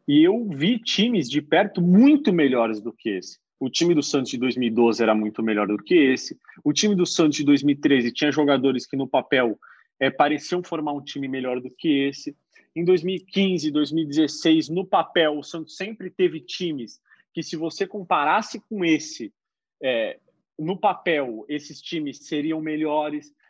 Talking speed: 165 wpm